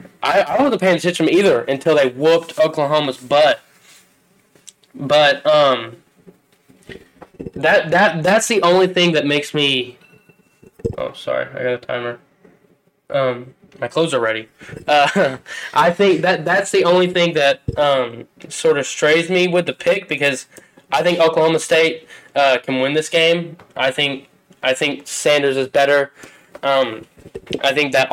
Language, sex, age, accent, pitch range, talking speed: English, male, 10-29, American, 140-175 Hz, 150 wpm